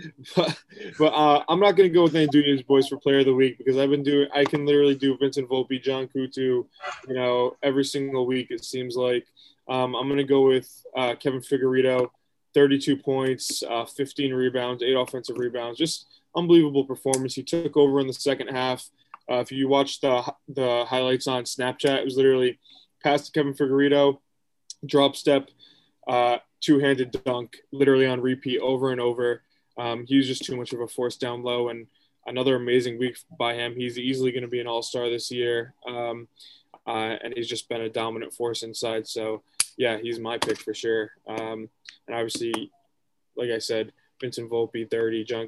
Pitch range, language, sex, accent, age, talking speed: 120-140 Hz, English, male, American, 20-39, 185 wpm